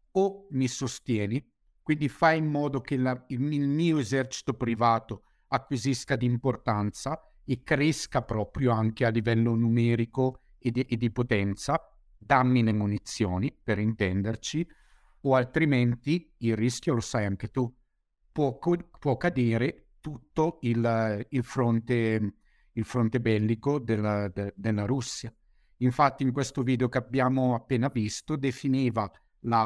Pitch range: 115-140 Hz